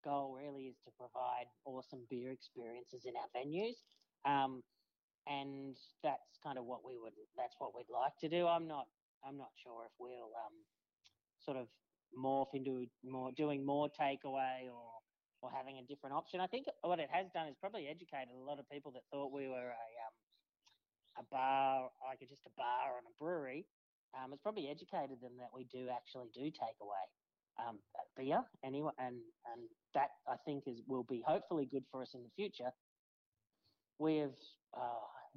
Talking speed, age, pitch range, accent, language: 185 wpm, 30-49, 125-150 Hz, Australian, English